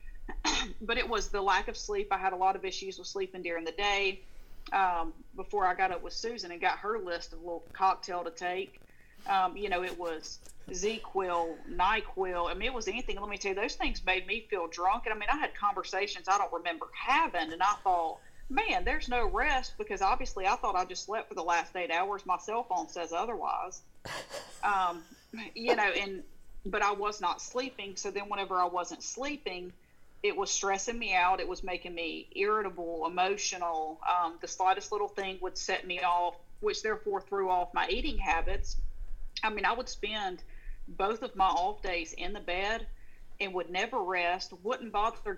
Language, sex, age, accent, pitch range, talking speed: English, female, 40-59, American, 180-220 Hz, 200 wpm